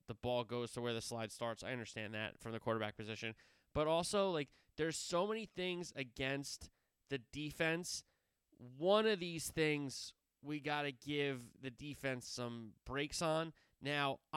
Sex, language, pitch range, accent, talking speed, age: male, English, 135-160 Hz, American, 165 wpm, 20-39